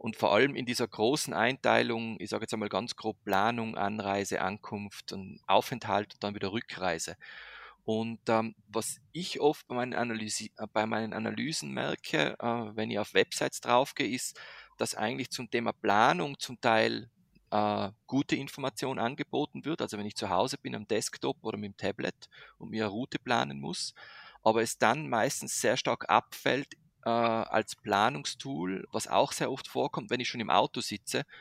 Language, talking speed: German, 170 wpm